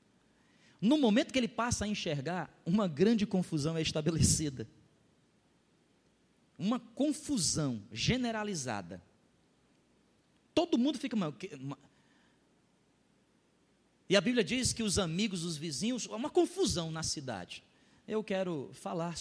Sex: male